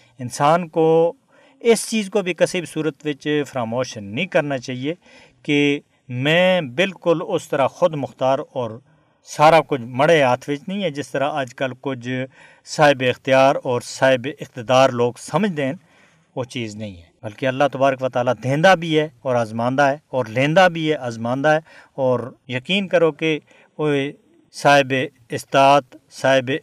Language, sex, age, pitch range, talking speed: Urdu, male, 50-69, 125-155 Hz, 155 wpm